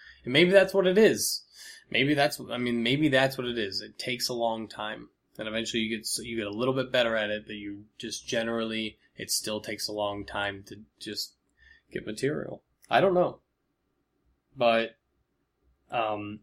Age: 20-39